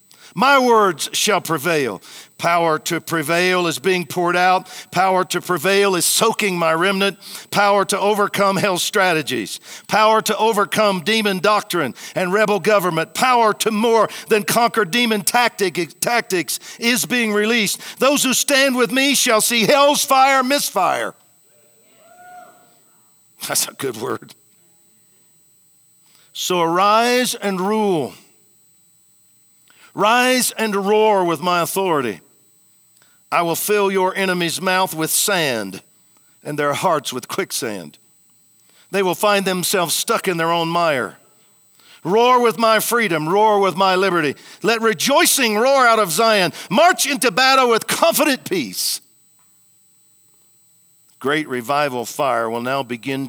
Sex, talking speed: male, 125 wpm